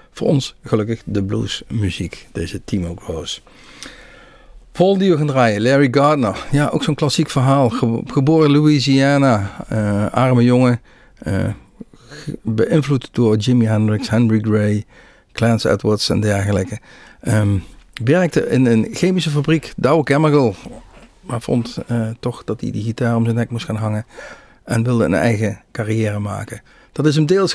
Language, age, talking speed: Dutch, 50-69, 145 wpm